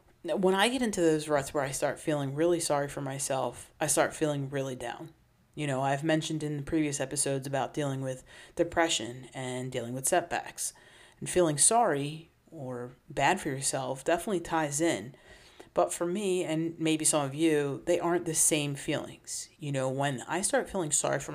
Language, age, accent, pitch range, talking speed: English, 30-49, American, 140-170 Hz, 185 wpm